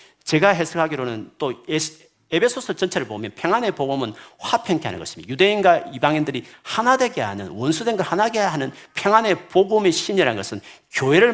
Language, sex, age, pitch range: Korean, male, 40-59, 125-200 Hz